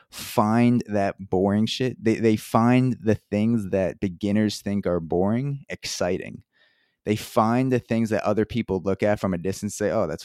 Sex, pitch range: male, 95-110 Hz